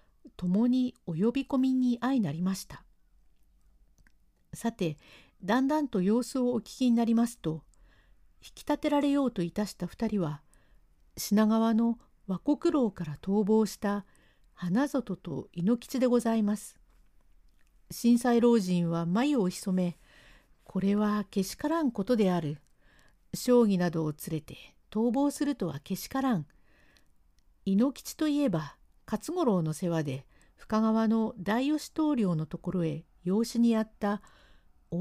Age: 50-69